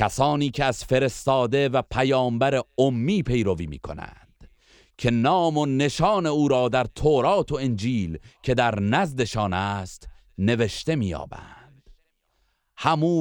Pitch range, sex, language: 100-140 Hz, male, Persian